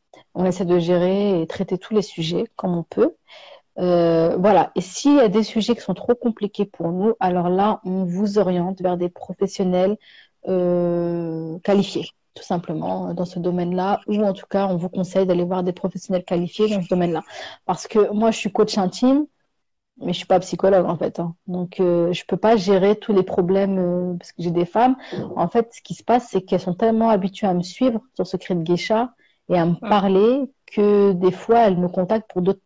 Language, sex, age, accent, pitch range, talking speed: French, female, 30-49, French, 175-210 Hz, 220 wpm